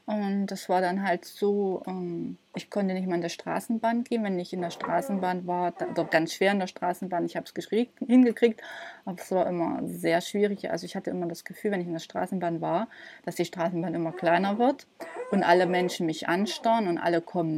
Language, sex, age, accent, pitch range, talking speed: German, female, 20-39, German, 170-200 Hz, 210 wpm